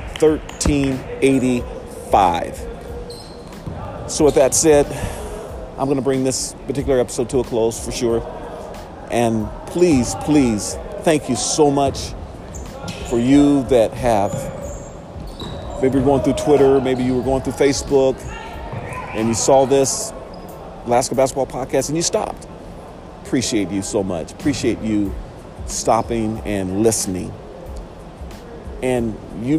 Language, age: English, 40-59